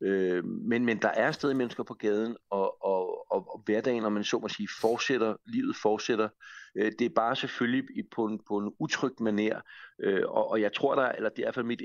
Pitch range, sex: 100-125 Hz, male